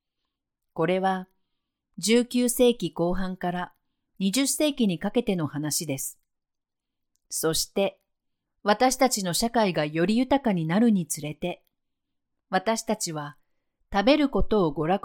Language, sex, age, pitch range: Japanese, female, 40-59, 165-230 Hz